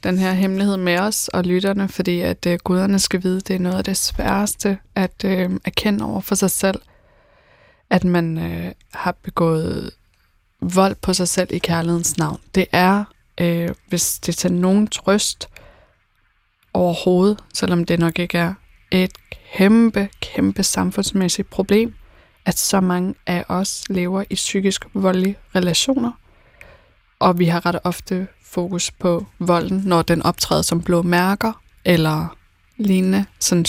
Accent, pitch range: native, 170-195 Hz